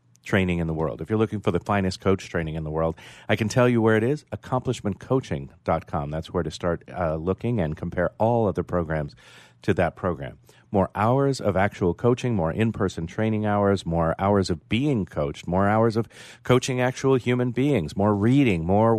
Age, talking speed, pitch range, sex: 40-59, 195 wpm, 85-115 Hz, male